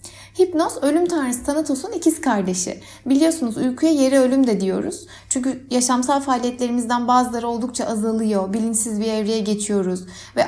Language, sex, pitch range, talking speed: Turkish, female, 215-275 Hz, 130 wpm